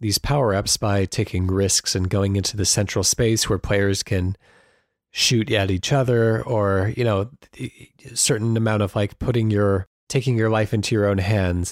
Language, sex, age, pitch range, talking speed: English, male, 30-49, 100-115 Hz, 180 wpm